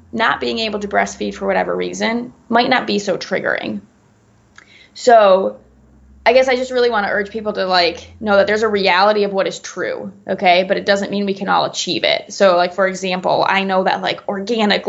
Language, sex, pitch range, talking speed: English, female, 185-210 Hz, 215 wpm